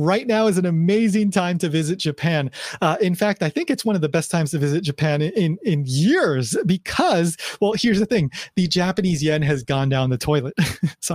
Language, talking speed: English, 215 wpm